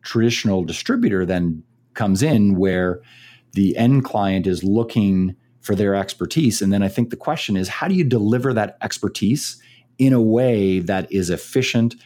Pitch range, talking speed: 95-120 Hz, 165 wpm